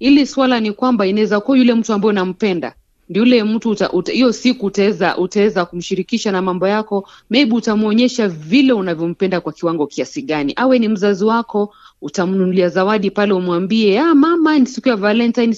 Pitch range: 180-235 Hz